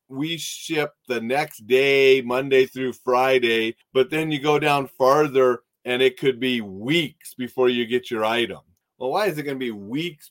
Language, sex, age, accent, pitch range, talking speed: English, male, 40-59, American, 120-160 Hz, 185 wpm